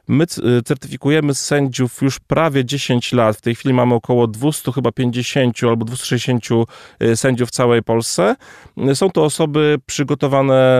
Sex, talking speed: male, 130 wpm